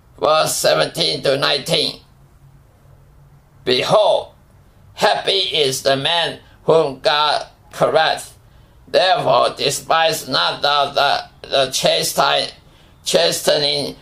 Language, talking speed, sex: English, 90 wpm, male